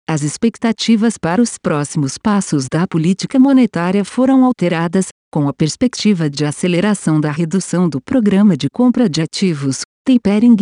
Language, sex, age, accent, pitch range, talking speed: Portuguese, female, 50-69, Brazilian, 155-220 Hz, 140 wpm